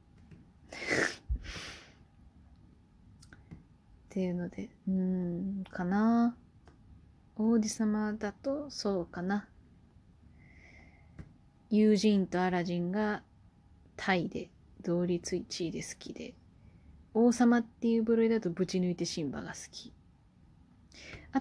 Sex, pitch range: female, 170-240 Hz